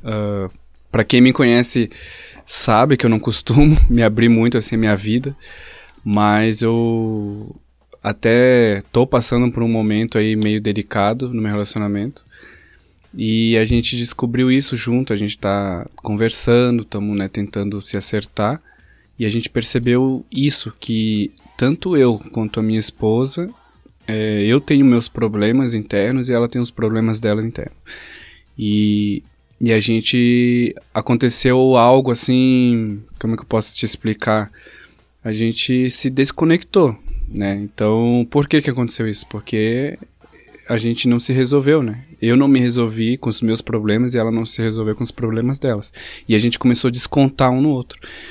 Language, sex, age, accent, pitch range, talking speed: Portuguese, male, 20-39, Brazilian, 110-125 Hz, 160 wpm